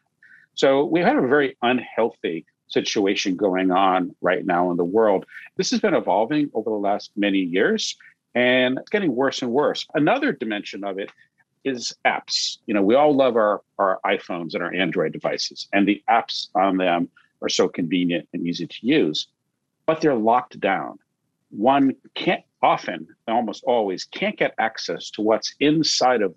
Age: 50-69